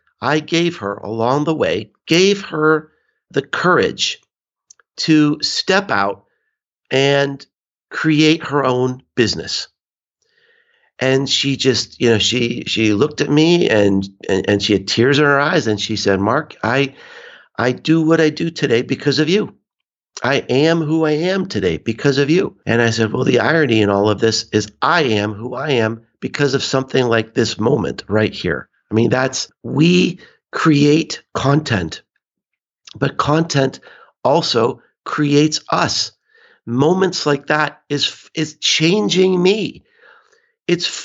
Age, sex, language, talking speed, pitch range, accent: 50-69, male, English, 150 wpm, 120-165 Hz, American